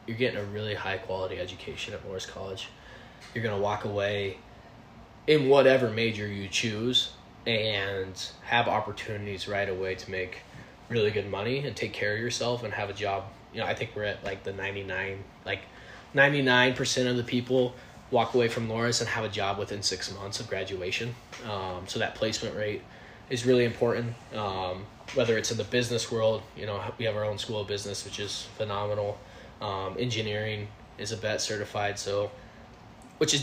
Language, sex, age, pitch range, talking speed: English, male, 20-39, 100-120 Hz, 185 wpm